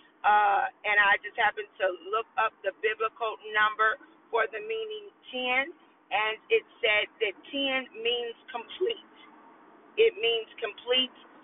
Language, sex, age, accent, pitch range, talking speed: English, female, 40-59, American, 220-315 Hz, 130 wpm